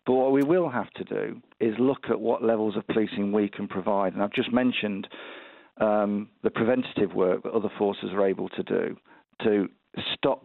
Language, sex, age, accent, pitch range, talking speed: English, male, 50-69, British, 100-125 Hz, 195 wpm